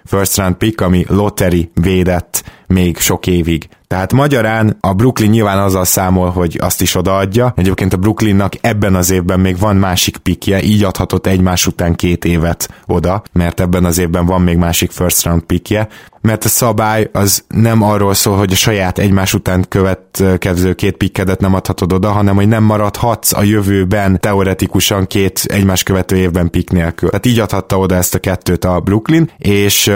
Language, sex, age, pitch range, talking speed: Hungarian, male, 20-39, 90-105 Hz, 180 wpm